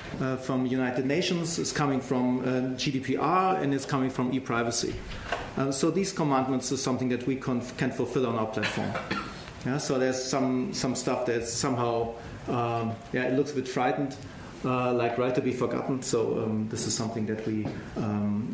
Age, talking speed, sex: 40-59, 185 wpm, male